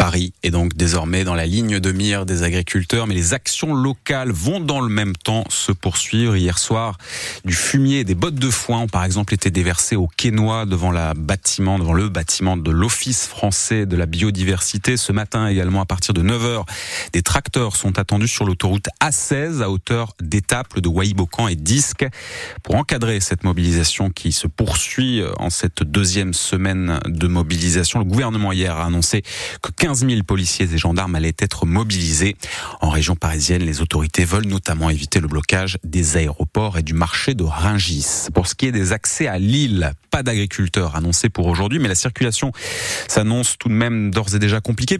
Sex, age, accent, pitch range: male, 30-49, French, 90-115 Hz